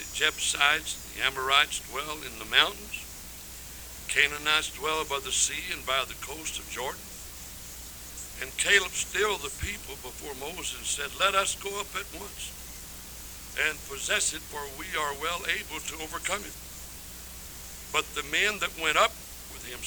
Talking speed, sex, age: 155 wpm, male, 60-79